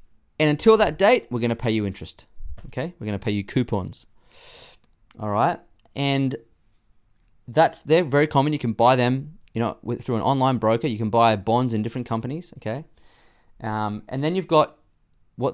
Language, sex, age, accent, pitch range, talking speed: English, male, 20-39, Australian, 110-150 Hz, 190 wpm